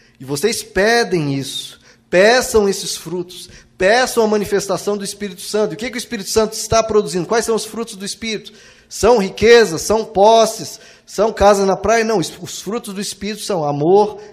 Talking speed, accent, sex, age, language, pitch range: 180 wpm, Brazilian, male, 20-39, Portuguese, 160-220 Hz